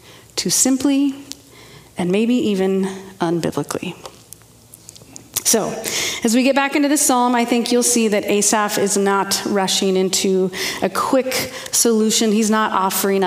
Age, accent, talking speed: 30-49, American, 135 wpm